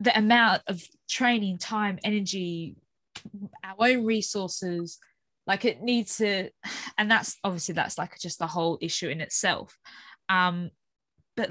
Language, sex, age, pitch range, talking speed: English, female, 10-29, 175-230 Hz, 135 wpm